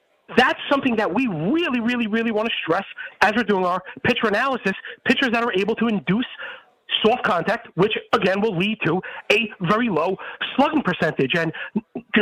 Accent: American